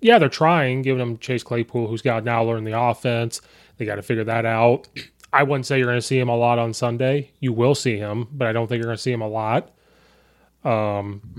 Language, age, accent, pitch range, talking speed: English, 20-39, American, 115-130 Hz, 255 wpm